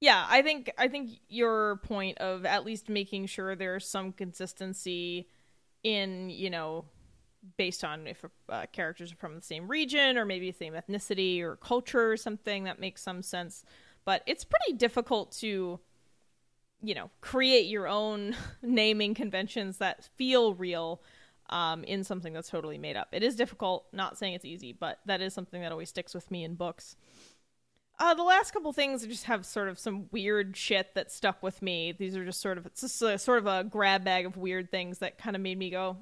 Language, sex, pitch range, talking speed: English, female, 185-245 Hz, 190 wpm